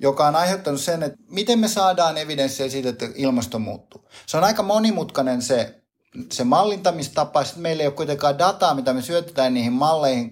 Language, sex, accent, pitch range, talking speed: Finnish, male, native, 125-160 Hz, 180 wpm